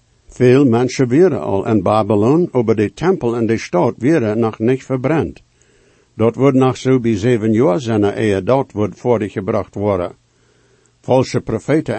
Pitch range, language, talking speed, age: 115-150 Hz, English, 155 wpm, 60-79